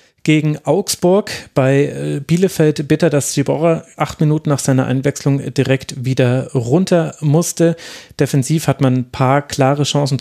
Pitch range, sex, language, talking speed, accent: 120-145 Hz, male, German, 135 wpm, German